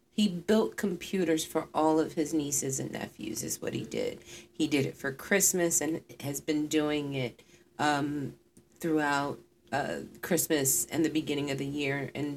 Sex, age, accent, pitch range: female, 40-59, American, 150-170 Hz